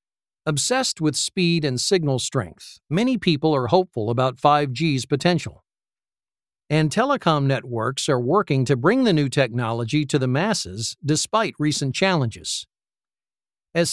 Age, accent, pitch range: 50-69, American, 130-170 Hz